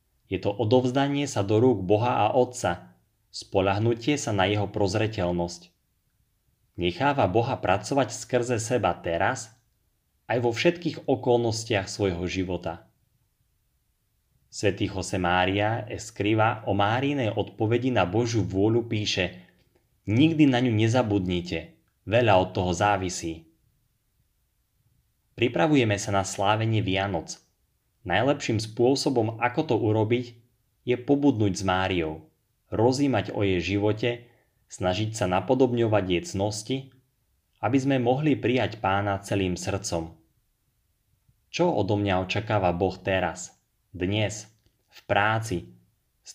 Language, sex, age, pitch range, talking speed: Slovak, male, 30-49, 95-120 Hz, 110 wpm